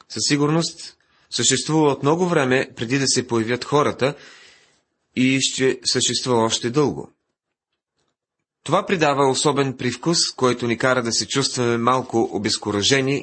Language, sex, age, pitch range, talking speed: Bulgarian, male, 30-49, 120-150 Hz, 125 wpm